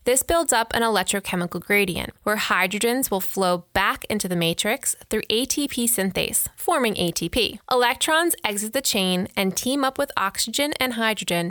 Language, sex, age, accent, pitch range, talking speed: English, female, 20-39, American, 185-260 Hz, 155 wpm